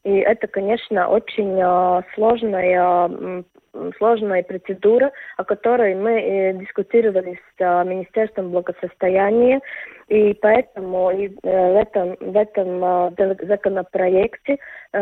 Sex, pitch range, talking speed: female, 185-215 Hz, 80 wpm